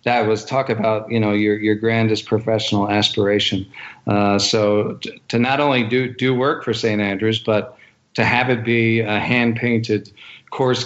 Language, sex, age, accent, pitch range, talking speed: English, male, 40-59, American, 105-125 Hz, 170 wpm